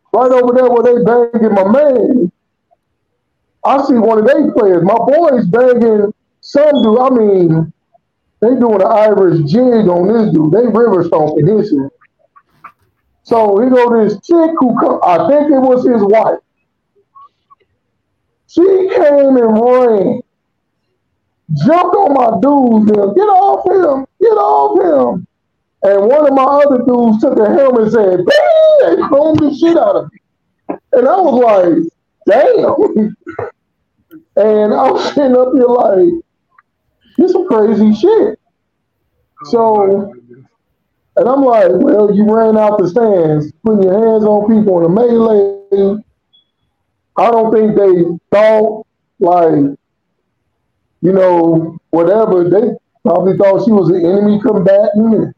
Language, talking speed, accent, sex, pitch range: English, 140 wpm, American, male, 205-290 Hz